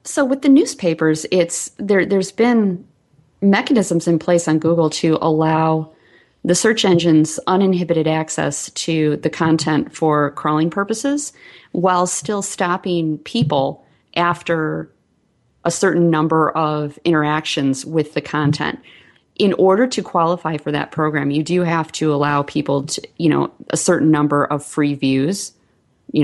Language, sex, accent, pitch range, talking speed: English, female, American, 145-180 Hz, 140 wpm